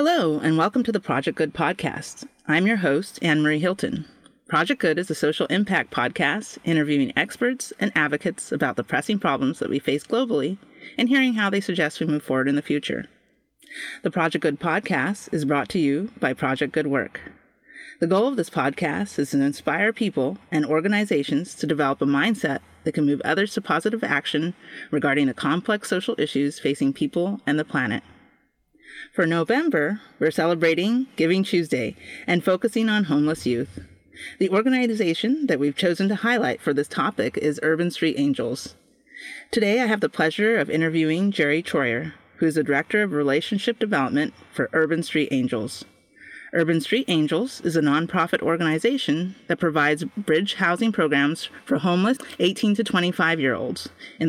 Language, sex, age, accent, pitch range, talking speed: English, female, 30-49, American, 150-210 Hz, 165 wpm